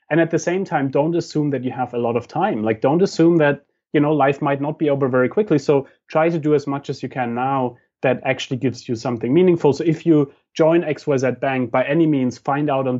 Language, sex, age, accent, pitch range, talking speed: English, male, 30-49, German, 130-155 Hz, 255 wpm